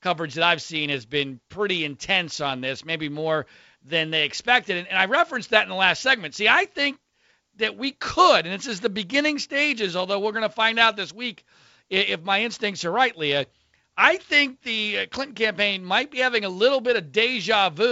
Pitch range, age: 185-255 Hz, 40-59